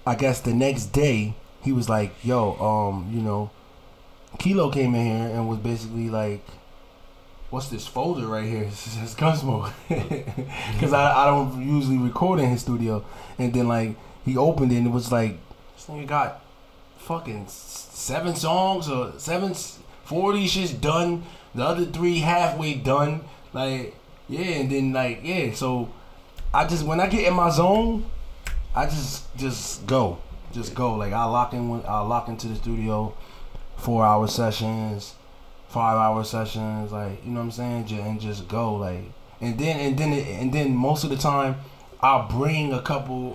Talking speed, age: 175 wpm, 20-39